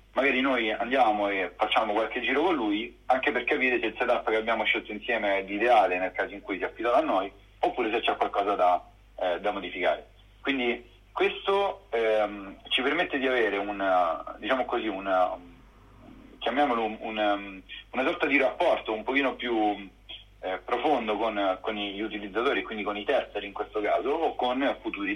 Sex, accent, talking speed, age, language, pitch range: male, native, 180 wpm, 40-59, Italian, 95-135 Hz